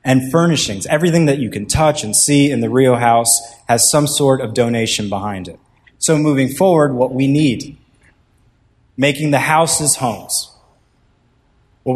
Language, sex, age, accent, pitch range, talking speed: English, male, 20-39, American, 115-135 Hz, 155 wpm